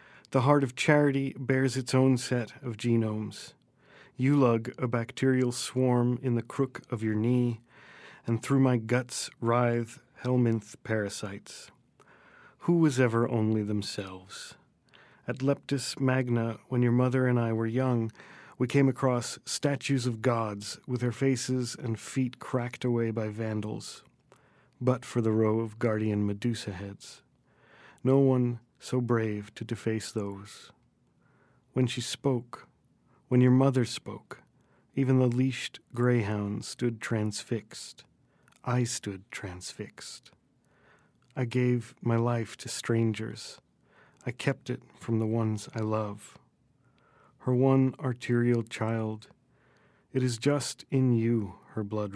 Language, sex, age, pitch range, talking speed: English, male, 40-59, 110-130 Hz, 130 wpm